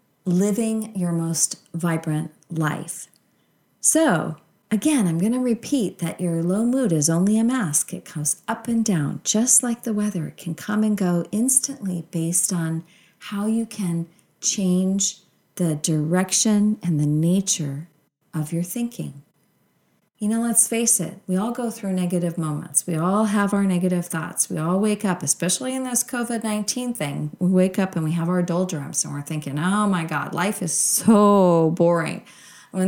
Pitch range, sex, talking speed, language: 170-215 Hz, female, 170 wpm, English